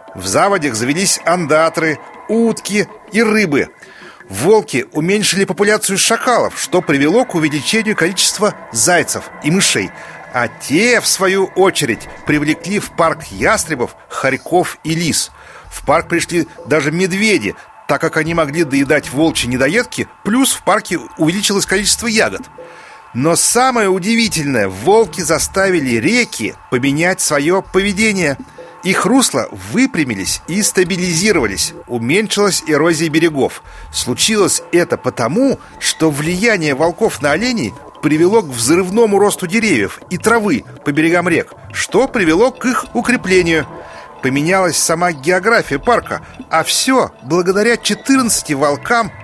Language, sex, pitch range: Russian, male, 155-210 Hz